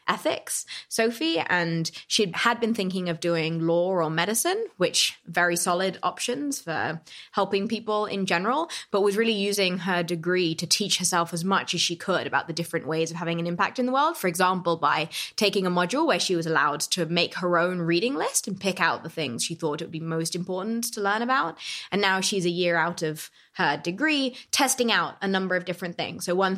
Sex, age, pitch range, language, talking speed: female, 20-39, 170-205 Hz, English, 215 wpm